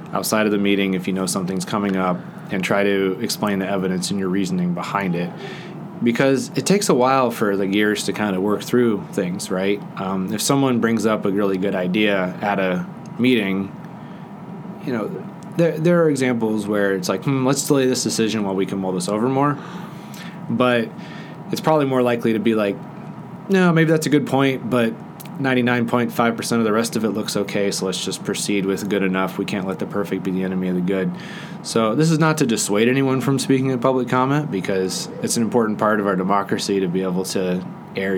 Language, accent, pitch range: English, American, 100-130 Hz